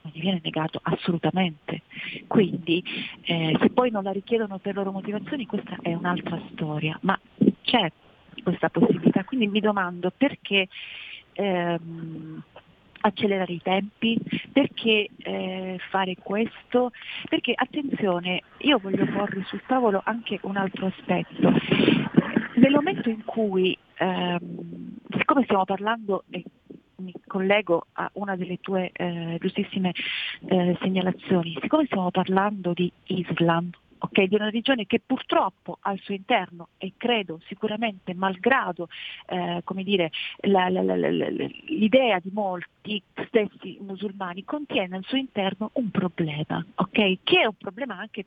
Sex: female